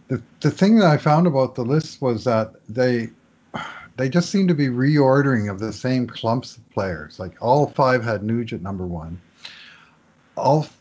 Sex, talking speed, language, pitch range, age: male, 185 wpm, English, 105-130 Hz, 50-69